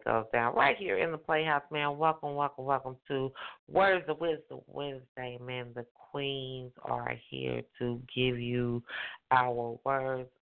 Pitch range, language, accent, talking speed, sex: 110-140 Hz, English, American, 150 wpm, female